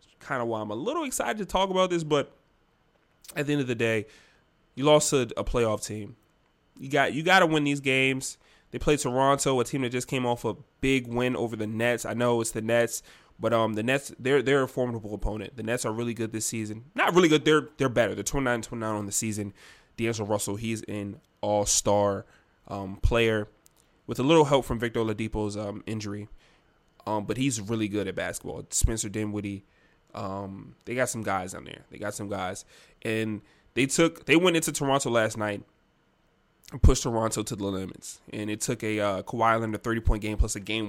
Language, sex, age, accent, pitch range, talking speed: English, male, 20-39, American, 105-140 Hz, 210 wpm